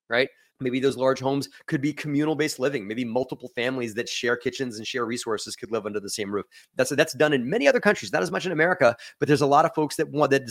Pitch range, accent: 115-145 Hz, American